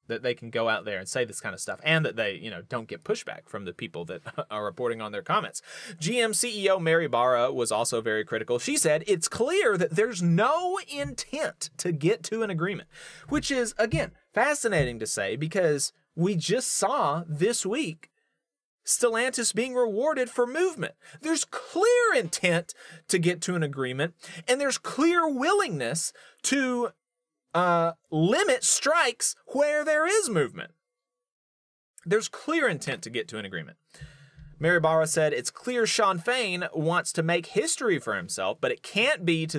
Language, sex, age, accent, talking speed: English, male, 30-49, American, 170 wpm